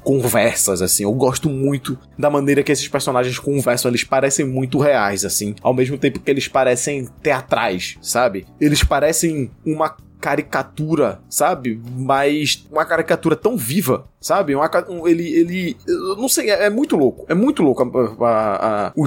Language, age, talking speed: Portuguese, 20-39, 165 wpm